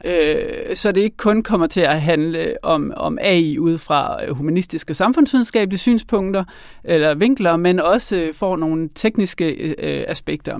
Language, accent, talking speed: Danish, native, 135 wpm